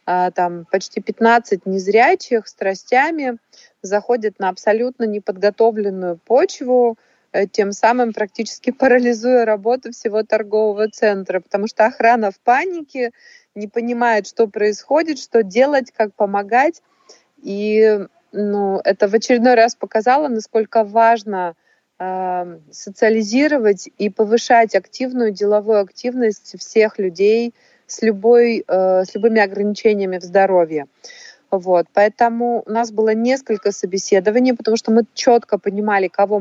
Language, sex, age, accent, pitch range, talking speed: Russian, female, 30-49, native, 200-240 Hz, 110 wpm